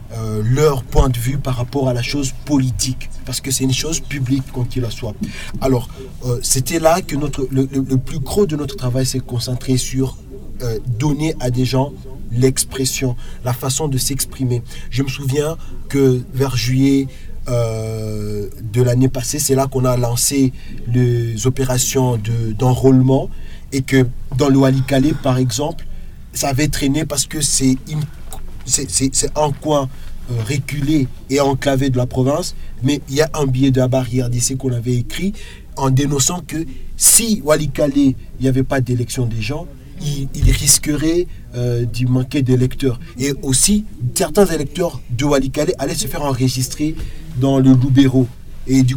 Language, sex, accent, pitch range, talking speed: French, male, French, 125-145 Hz, 170 wpm